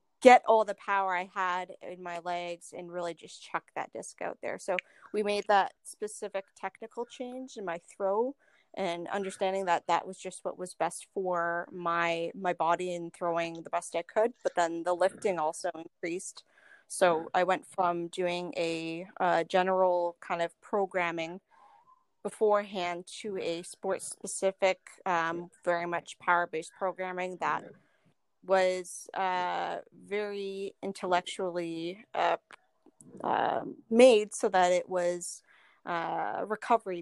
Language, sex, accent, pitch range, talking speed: English, female, American, 170-195 Hz, 140 wpm